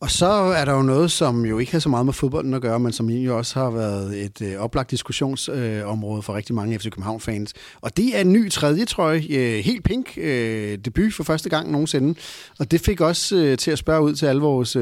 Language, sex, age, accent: Danish, male, 30-49, native